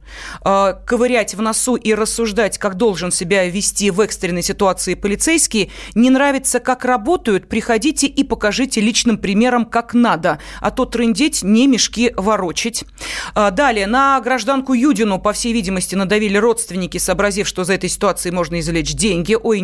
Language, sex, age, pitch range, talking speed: Russian, female, 30-49, 185-250 Hz, 145 wpm